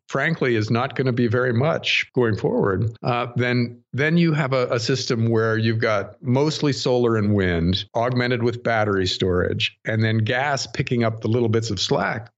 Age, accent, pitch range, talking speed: 50-69, American, 110-130 Hz, 190 wpm